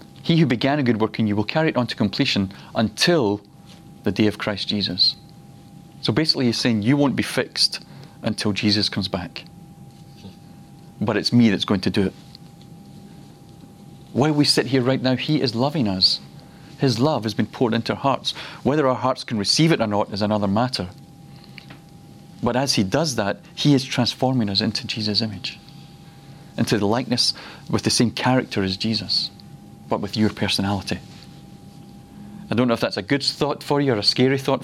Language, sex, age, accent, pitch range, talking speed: English, male, 40-59, British, 105-135 Hz, 185 wpm